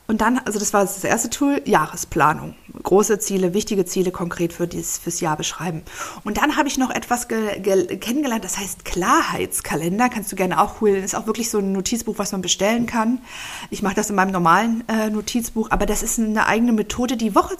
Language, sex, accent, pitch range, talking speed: German, female, German, 195-230 Hz, 200 wpm